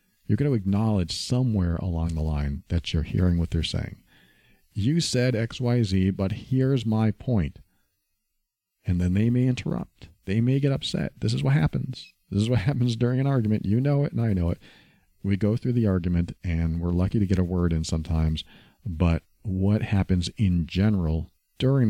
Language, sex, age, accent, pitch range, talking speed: English, male, 40-59, American, 85-105 Hz, 185 wpm